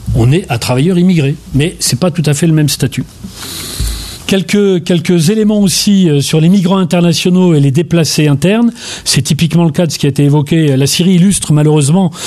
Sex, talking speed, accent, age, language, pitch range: male, 195 wpm, French, 40-59, French, 145-180 Hz